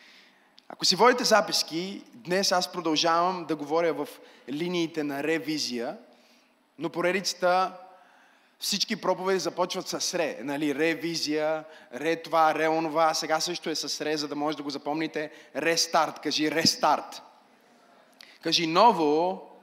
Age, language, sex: 20-39, Bulgarian, male